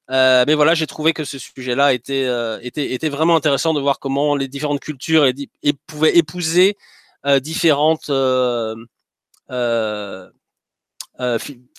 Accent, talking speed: French, 155 wpm